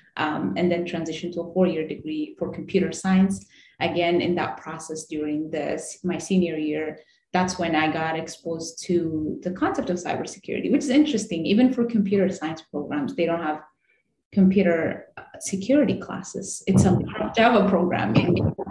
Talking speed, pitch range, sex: 155 wpm, 165-195 Hz, female